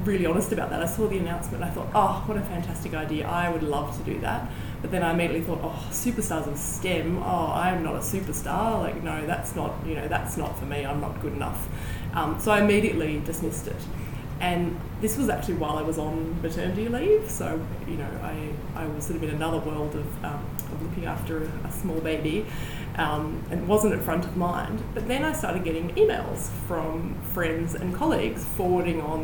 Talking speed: 215 wpm